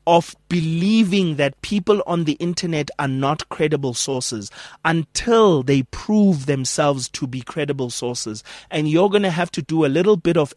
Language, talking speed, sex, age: English, 170 wpm, male, 30-49